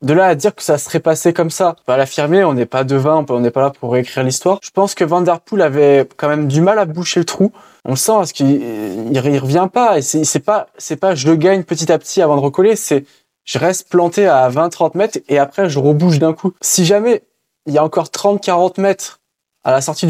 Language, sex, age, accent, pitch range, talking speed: French, male, 20-39, French, 150-195 Hz, 255 wpm